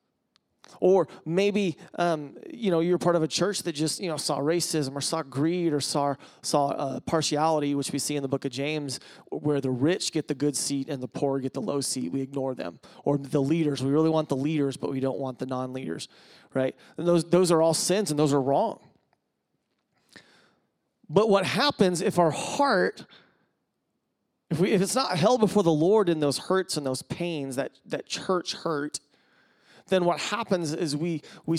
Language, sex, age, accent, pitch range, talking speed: English, male, 30-49, American, 145-180 Hz, 200 wpm